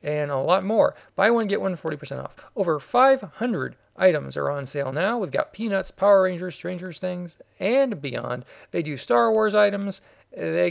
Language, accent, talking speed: English, American, 180 wpm